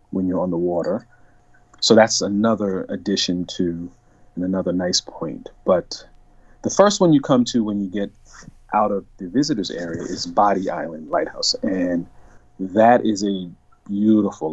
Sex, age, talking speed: male, 40-59, 155 wpm